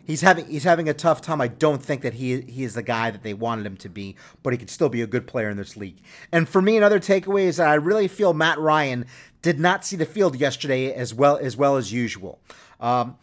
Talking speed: 255 wpm